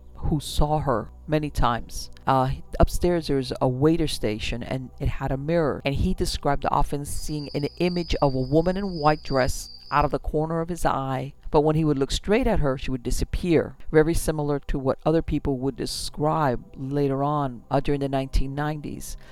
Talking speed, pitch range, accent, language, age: 190 wpm, 130-150 Hz, American, English, 50-69